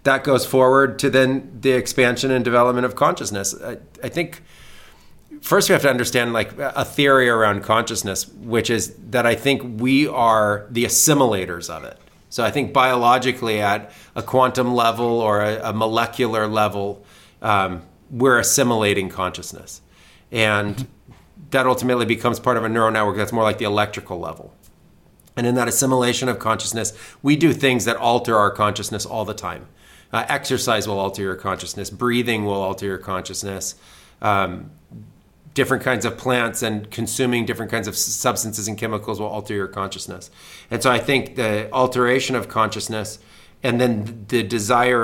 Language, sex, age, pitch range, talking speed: English, male, 30-49, 105-125 Hz, 165 wpm